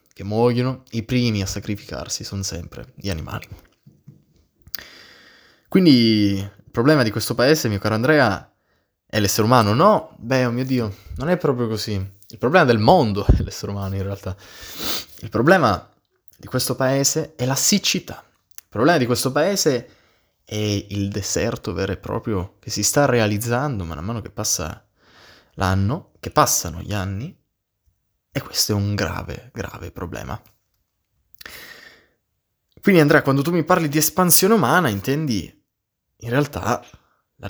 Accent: native